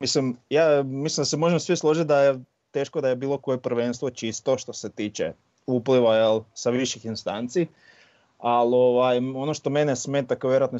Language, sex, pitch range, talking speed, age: Croatian, male, 115-135 Hz, 180 wpm, 20-39